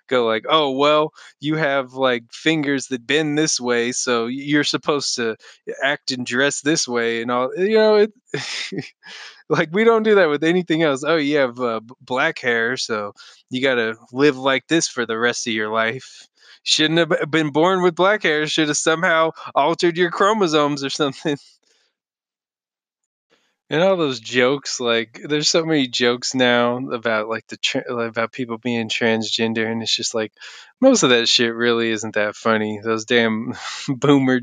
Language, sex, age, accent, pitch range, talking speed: English, male, 20-39, American, 115-155 Hz, 175 wpm